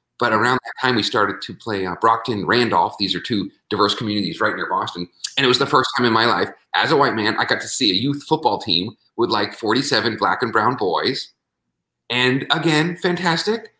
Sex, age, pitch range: male, 40-59, 105-155 Hz